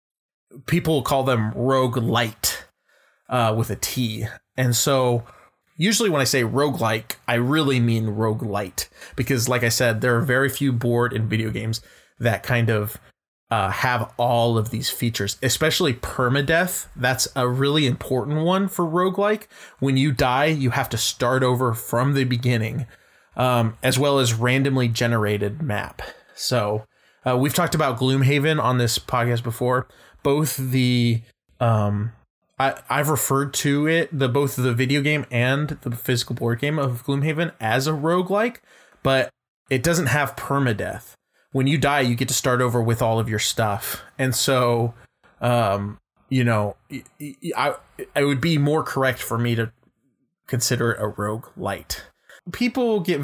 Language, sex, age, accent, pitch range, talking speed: English, male, 20-39, American, 115-145 Hz, 155 wpm